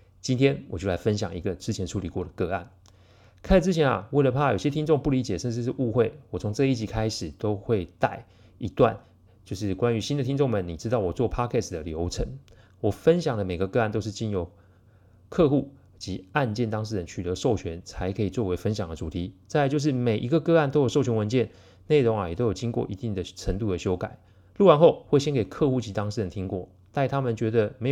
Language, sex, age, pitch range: Chinese, male, 30-49, 95-125 Hz